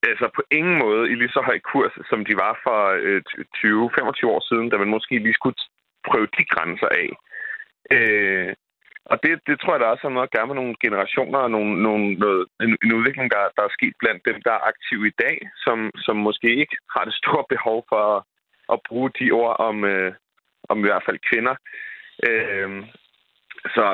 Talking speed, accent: 195 wpm, native